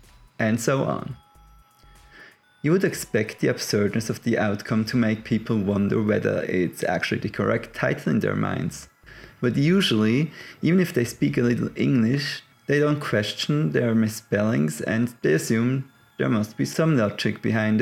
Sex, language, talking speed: male, English, 160 wpm